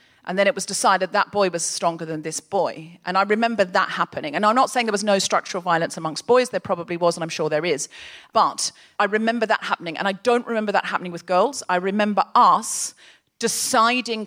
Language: English